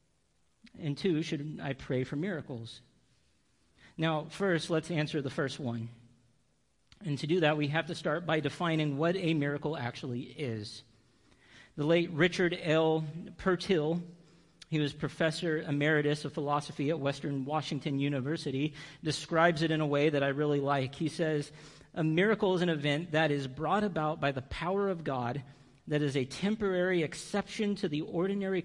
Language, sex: English, male